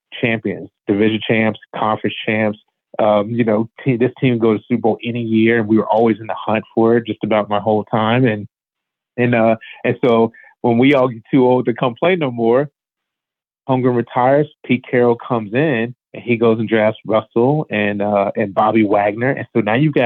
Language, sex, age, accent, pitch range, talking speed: English, male, 30-49, American, 110-125 Hz, 205 wpm